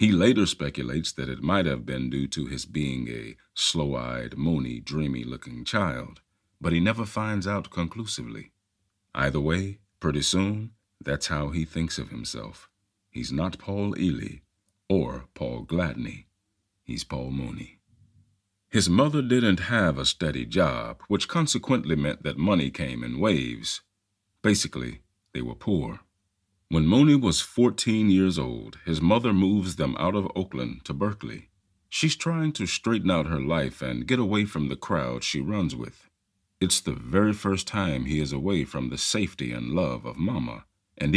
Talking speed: 160 wpm